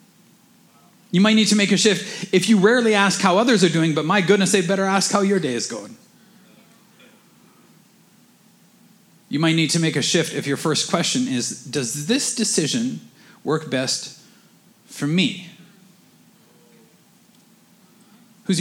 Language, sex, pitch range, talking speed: English, male, 180-225 Hz, 150 wpm